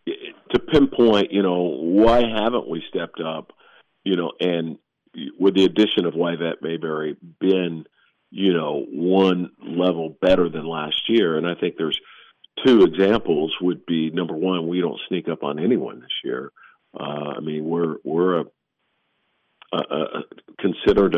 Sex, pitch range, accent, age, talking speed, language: male, 80-100 Hz, American, 50-69, 155 wpm, English